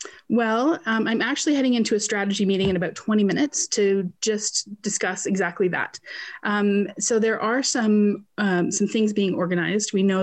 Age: 30-49